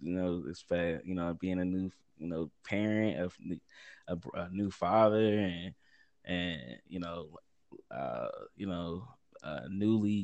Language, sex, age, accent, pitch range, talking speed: English, male, 20-39, American, 90-110 Hz, 130 wpm